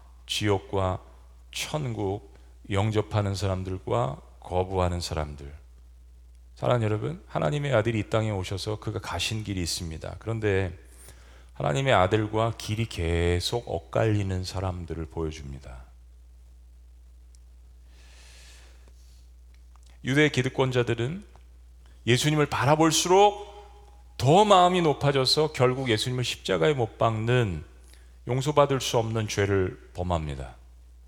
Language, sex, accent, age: Korean, male, native, 40-59